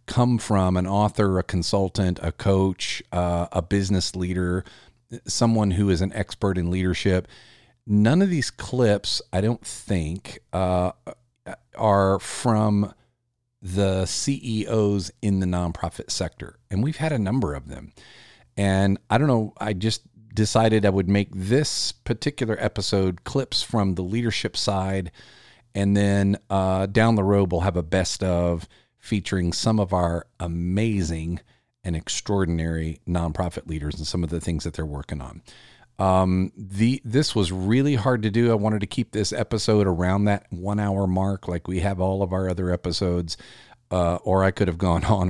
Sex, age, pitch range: male, 40-59, 90-110 Hz